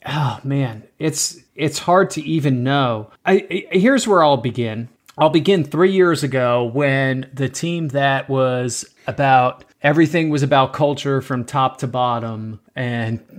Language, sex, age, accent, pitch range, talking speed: English, male, 30-49, American, 135-170 Hz, 150 wpm